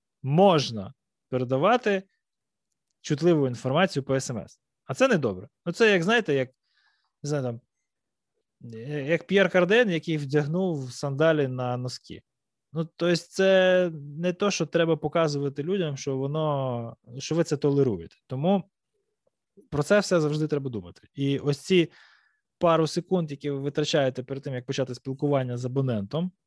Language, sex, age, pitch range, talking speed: Ukrainian, male, 20-39, 130-180 Hz, 140 wpm